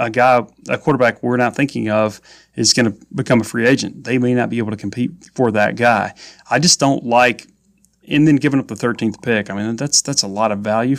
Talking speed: 245 wpm